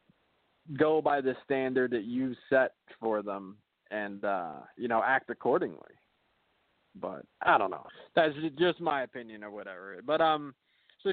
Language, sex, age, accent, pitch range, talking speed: English, male, 20-39, American, 115-155 Hz, 150 wpm